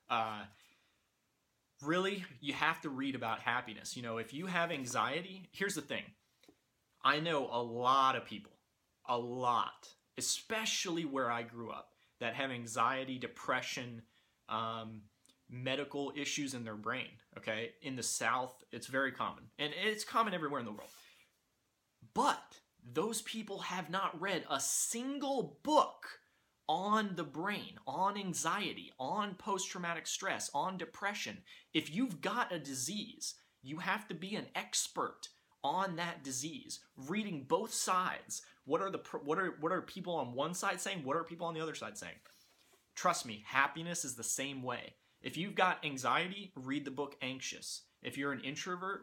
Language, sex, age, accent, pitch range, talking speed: English, male, 30-49, American, 130-185 Hz, 160 wpm